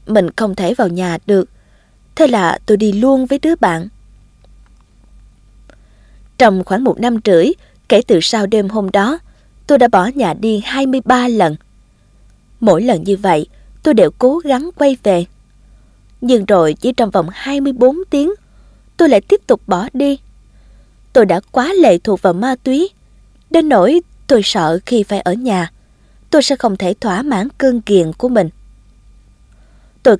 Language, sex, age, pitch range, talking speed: Vietnamese, female, 20-39, 190-260 Hz, 165 wpm